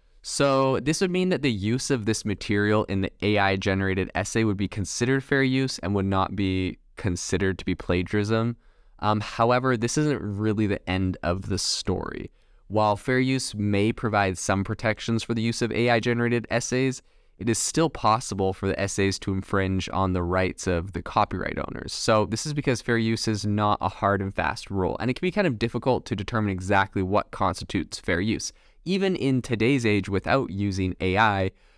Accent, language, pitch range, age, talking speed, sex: American, English, 95-115 Hz, 20-39, 190 wpm, male